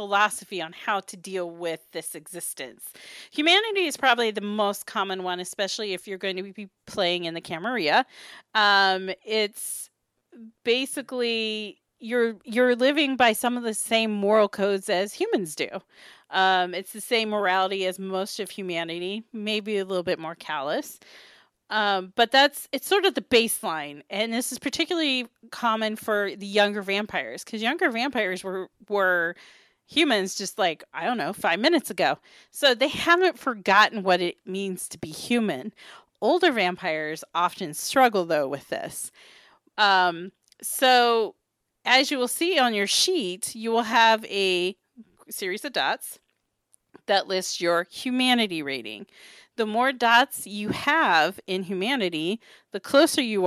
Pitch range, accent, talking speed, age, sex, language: 185-245 Hz, American, 150 wpm, 40-59, female, English